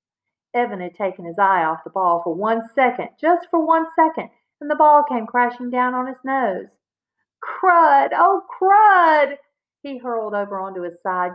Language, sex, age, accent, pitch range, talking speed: English, female, 50-69, American, 175-245 Hz, 175 wpm